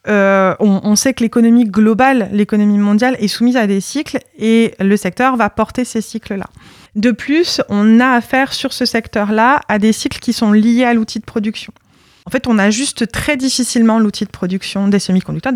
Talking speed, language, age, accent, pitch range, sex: 195 wpm, French, 20-39, French, 195-240 Hz, female